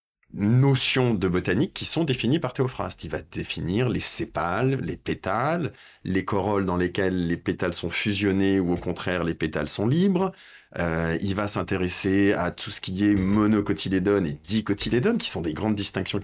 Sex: male